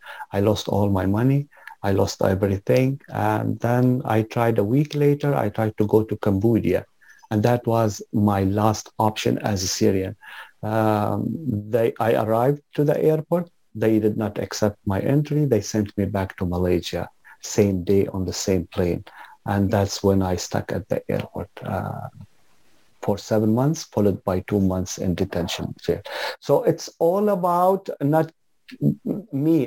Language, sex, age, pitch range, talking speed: English, male, 50-69, 95-115 Hz, 160 wpm